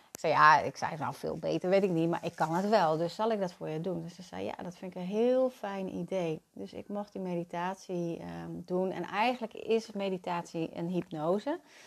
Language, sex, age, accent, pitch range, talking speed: Dutch, female, 30-49, Dutch, 175-215 Hz, 245 wpm